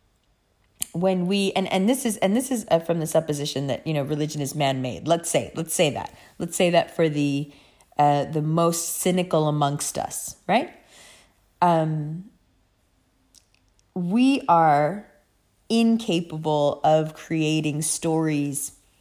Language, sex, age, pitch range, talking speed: English, female, 30-49, 140-165 Hz, 135 wpm